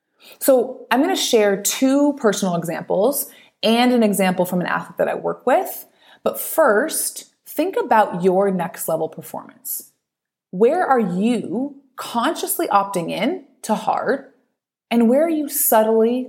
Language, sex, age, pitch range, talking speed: English, female, 30-49, 190-275 Hz, 145 wpm